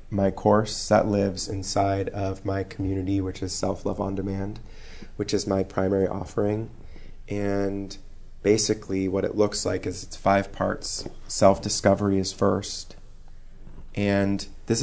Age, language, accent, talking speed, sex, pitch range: 30-49, English, American, 135 wpm, male, 95-105 Hz